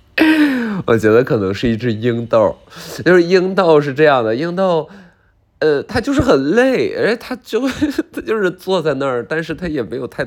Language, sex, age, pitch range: Chinese, male, 20-39, 95-145 Hz